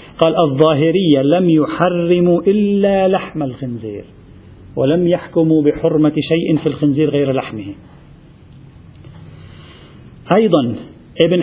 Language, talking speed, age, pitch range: Arabic, 90 wpm, 40-59, 135-175 Hz